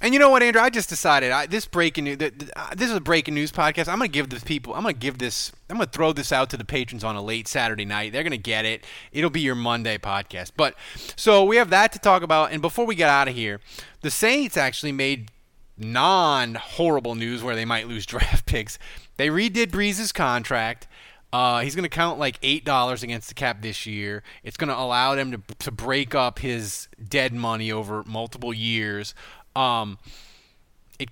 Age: 20-39